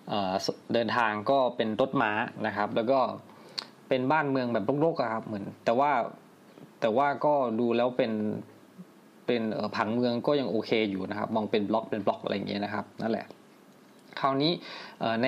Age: 20-39